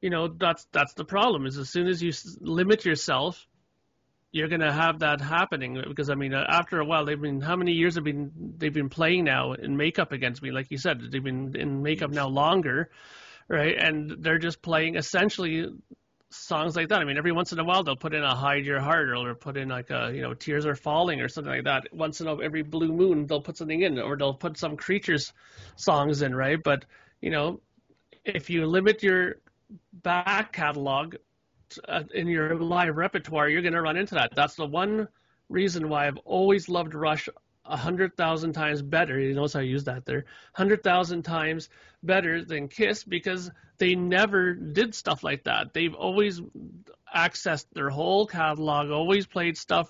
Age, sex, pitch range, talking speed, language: 30-49, male, 150-180 Hz, 195 wpm, English